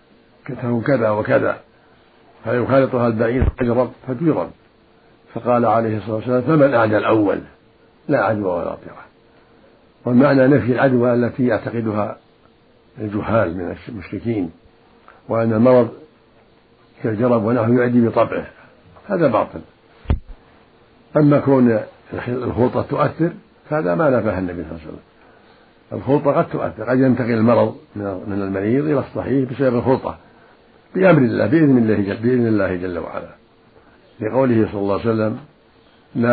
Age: 60-79